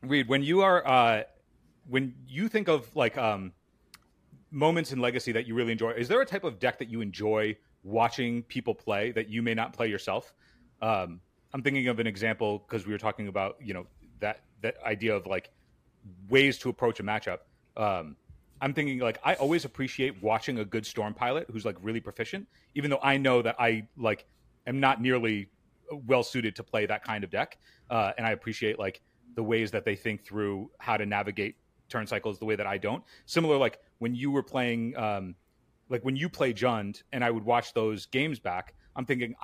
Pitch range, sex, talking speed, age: 110-130 Hz, male, 205 wpm, 30-49